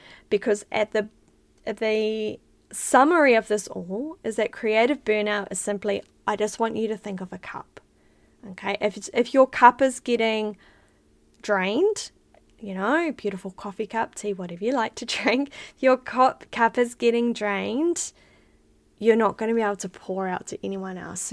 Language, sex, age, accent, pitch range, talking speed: English, female, 10-29, Australian, 200-240 Hz, 170 wpm